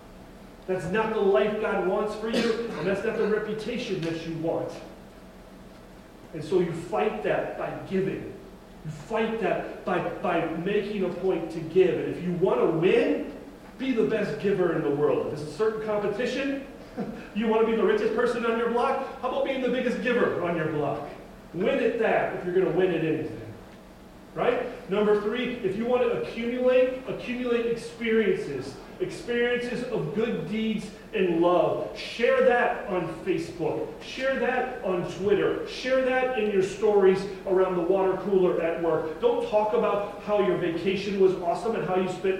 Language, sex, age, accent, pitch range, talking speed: English, male, 40-59, American, 185-235 Hz, 180 wpm